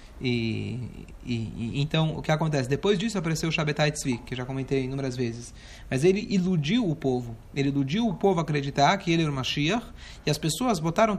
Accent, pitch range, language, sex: Brazilian, 140-205 Hz, Portuguese, male